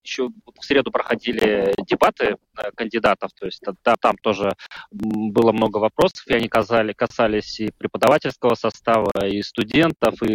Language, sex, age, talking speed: Russian, male, 20-39, 140 wpm